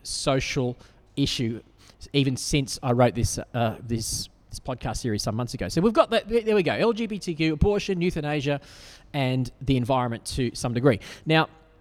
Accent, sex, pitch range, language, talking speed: Australian, male, 115-150 Hz, English, 165 wpm